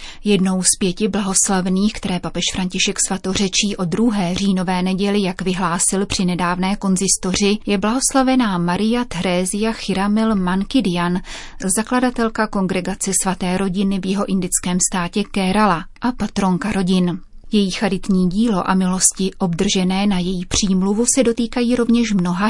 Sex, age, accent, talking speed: female, 30-49, native, 130 wpm